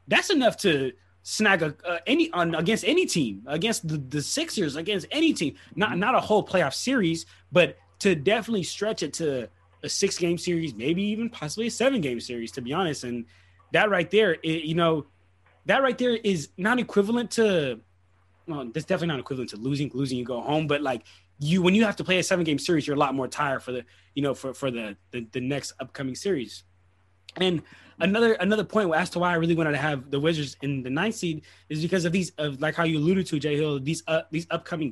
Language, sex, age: English, male, 20-39